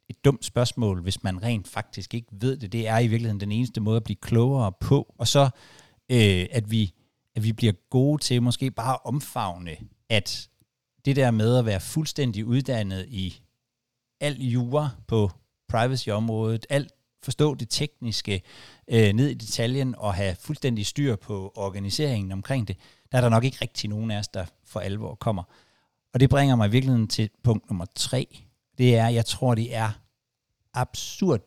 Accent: native